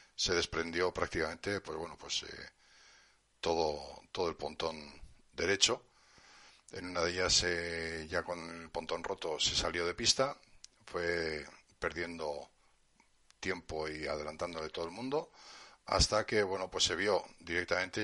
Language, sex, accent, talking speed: Spanish, male, Spanish, 135 wpm